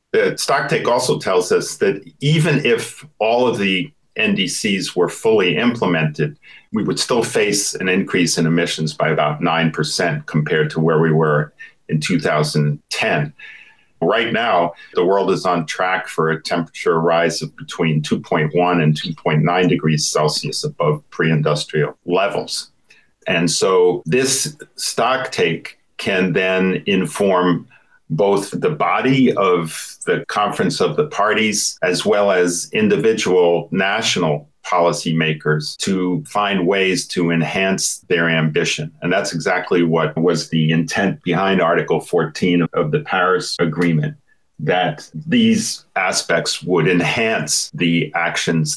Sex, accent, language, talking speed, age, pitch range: male, American, English, 130 wpm, 40-59, 80-95 Hz